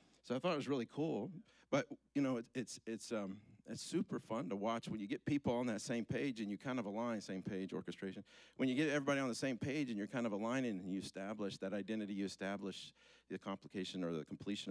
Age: 50-69